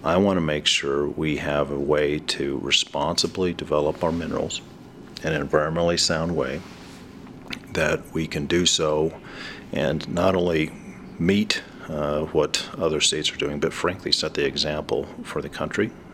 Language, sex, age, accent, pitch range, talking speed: English, male, 40-59, American, 75-85 Hz, 155 wpm